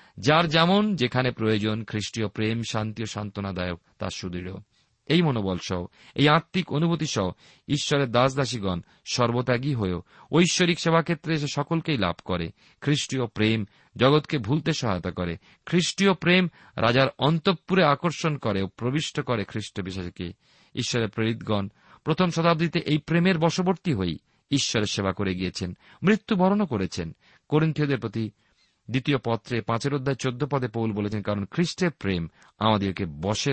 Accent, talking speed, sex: native, 100 wpm, male